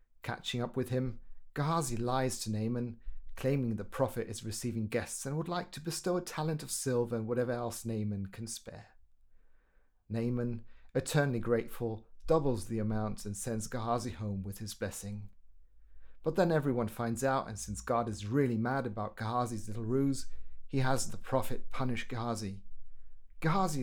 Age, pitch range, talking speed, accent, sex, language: 40-59, 105-140 Hz, 160 wpm, British, male, English